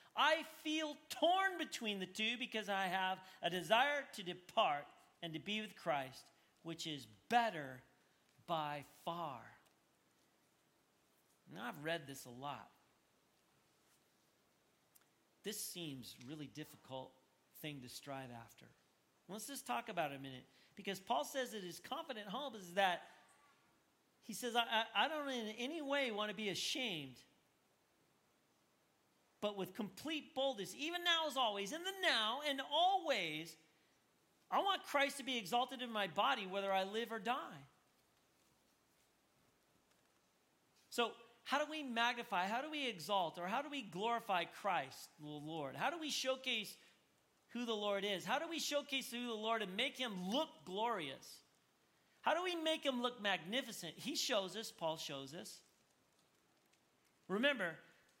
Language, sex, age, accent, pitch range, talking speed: English, male, 40-59, American, 175-265 Hz, 145 wpm